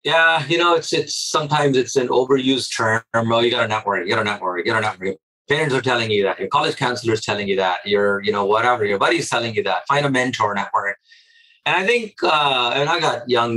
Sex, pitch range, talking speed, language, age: male, 110-145 Hz, 250 wpm, English, 30-49